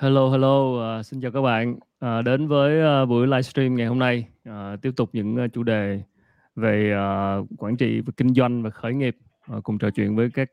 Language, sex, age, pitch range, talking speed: Vietnamese, male, 20-39, 110-130 Hz, 220 wpm